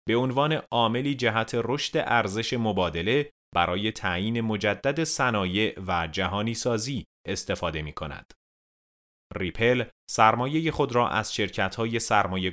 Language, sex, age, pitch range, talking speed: Persian, male, 30-49, 90-125 Hz, 120 wpm